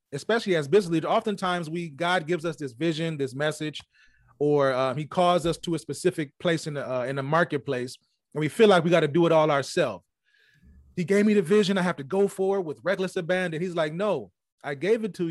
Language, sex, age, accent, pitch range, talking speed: English, male, 30-49, American, 150-190 Hz, 230 wpm